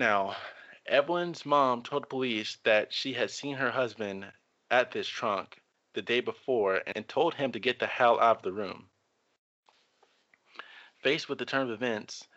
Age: 20-39